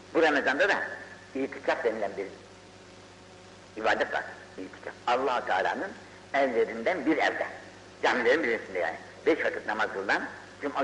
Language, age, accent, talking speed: Turkish, 60-79, native, 115 wpm